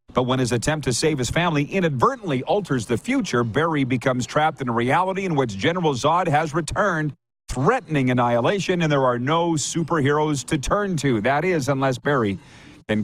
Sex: male